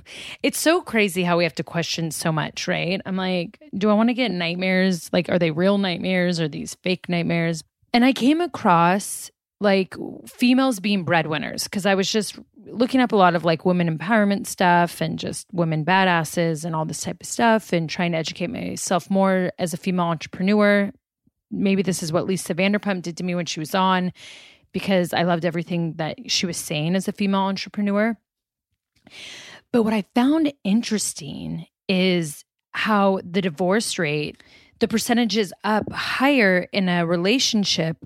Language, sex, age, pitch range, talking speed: English, female, 30-49, 170-215 Hz, 175 wpm